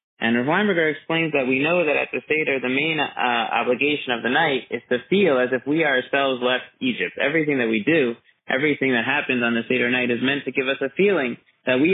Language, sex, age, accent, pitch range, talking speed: English, male, 30-49, American, 130-175 Hz, 230 wpm